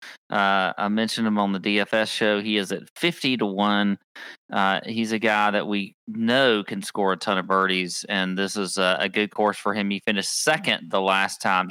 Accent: American